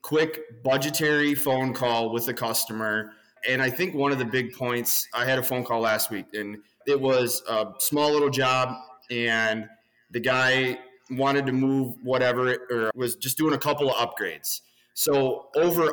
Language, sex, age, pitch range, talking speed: English, male, 20-39, 115-135 Hz, 175 wpm